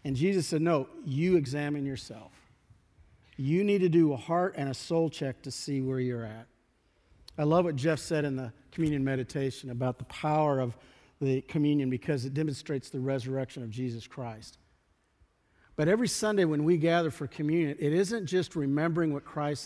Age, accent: 50-69, American